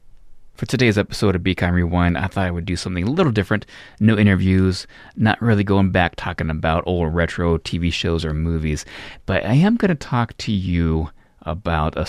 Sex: male